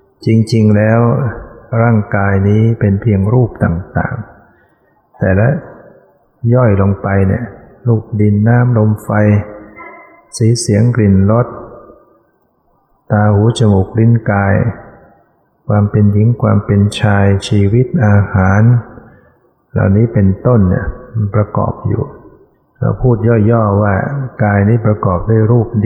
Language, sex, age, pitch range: Thai, male, 60-79, 100-115 Hz